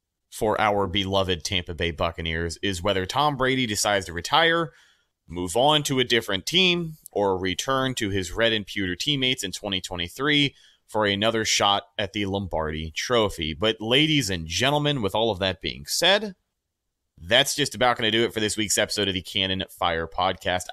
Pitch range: 95-125 Hz